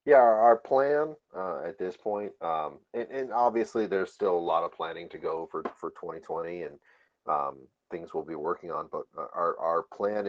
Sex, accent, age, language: male, American, 40-59, English